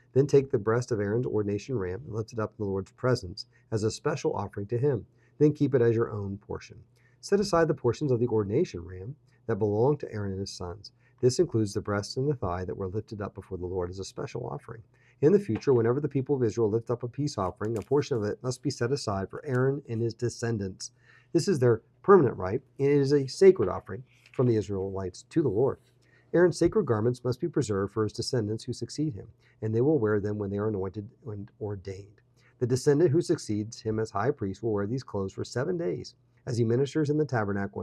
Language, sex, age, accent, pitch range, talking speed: English, male, 40-59, American, 105-130 Hz, 235 wpm